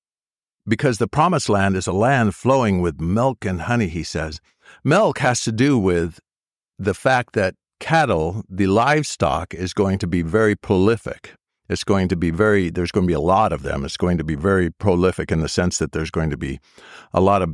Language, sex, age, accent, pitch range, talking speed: English, male, 60-79, American, 90-115 Hz, 210 wpm